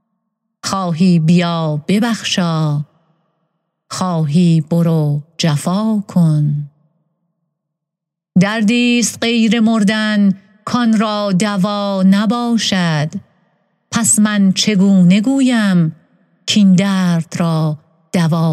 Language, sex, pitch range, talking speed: Persian, female, 165-200 Hz, 75 wpm